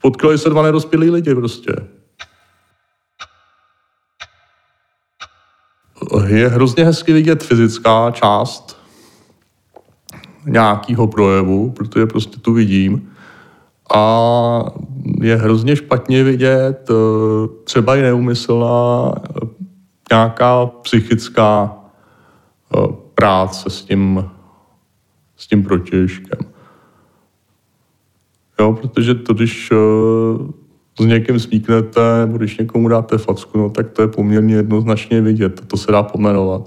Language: Czech